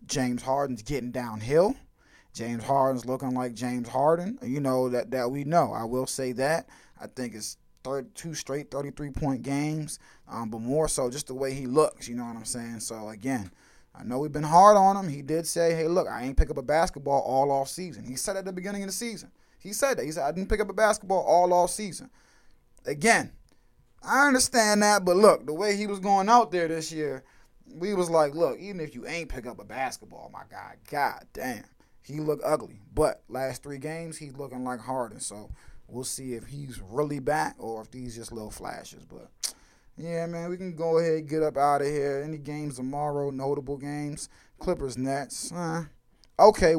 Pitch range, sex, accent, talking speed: 125-165 Hz, male, American, 210 wpm